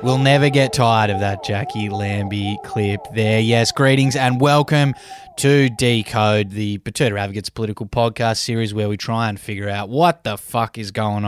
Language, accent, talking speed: English, Australian, 175 wpm